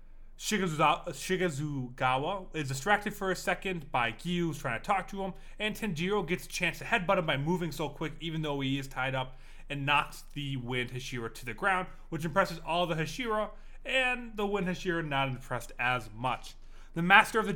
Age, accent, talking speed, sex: 30-49, American, 195 wpm, male